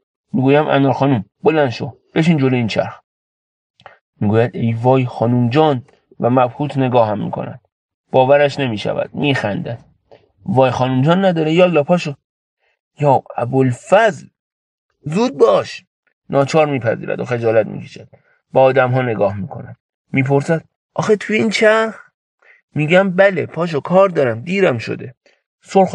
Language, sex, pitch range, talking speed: Persian, male, 125-165 Hz, 135 wpm